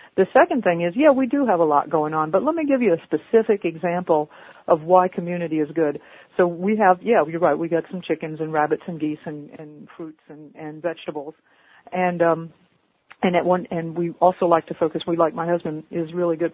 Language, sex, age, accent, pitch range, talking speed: English, female, 50-69, American, 160-190 Hz, 230 wpm